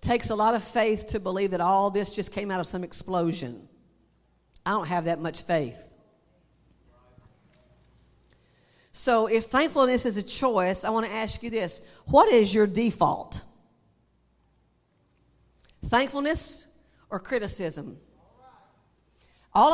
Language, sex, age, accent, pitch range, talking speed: English, female, 50-69, American, 200-245 Hz, 130 wpm